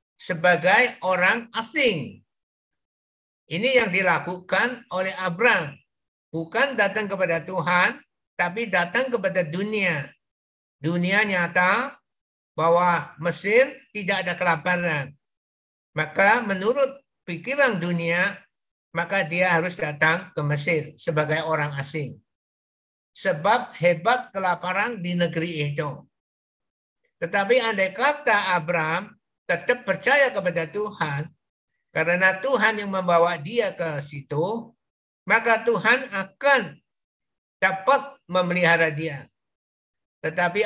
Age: 60-79